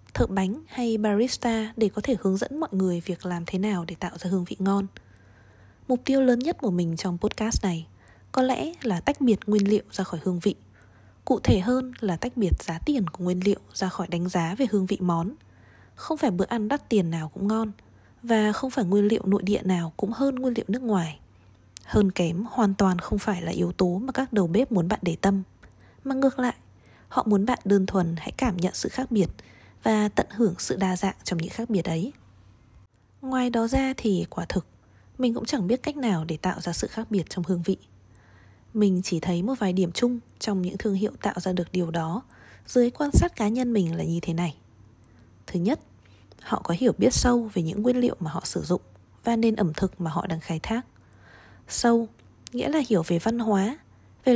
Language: Vietnamese